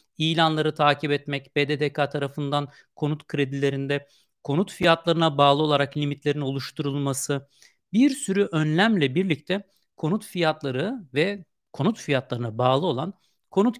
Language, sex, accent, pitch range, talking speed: Turkish, male, native, 130-195 Hz, 110 wpm